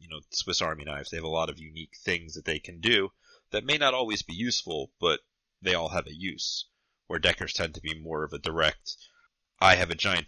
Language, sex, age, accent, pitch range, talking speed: English, male, 30-49, American, 80-95 Hz, 235 wpm